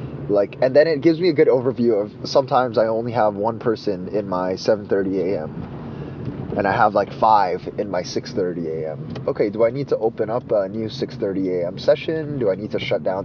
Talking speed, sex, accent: 215 wpm, male, American